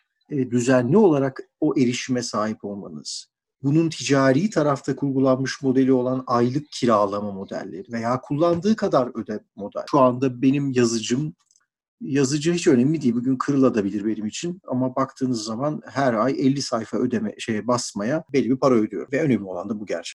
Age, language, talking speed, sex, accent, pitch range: 40-59, Turkish, 155 wpm, male, native, 120-155 Hz